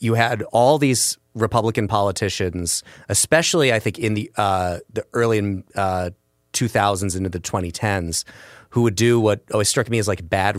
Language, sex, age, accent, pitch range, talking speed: English, male, 30-49, American, 95-115 Hz, 165 wpm